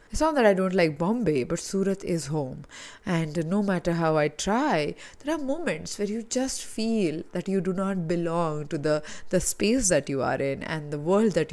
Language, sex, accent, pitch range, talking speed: English, female, Indian, 165-220 Hz, 215 wpm